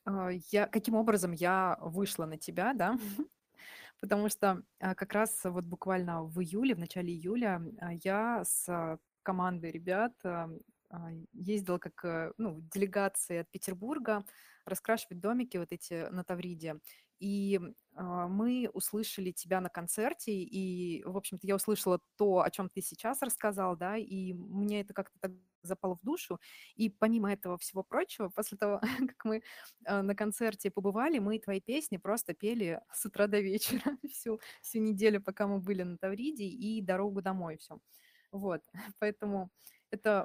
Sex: female